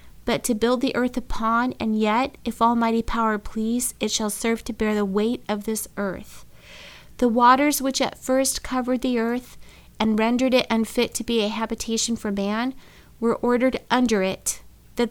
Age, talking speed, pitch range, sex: 30-49, 180 wpm, 220-255 Hz, female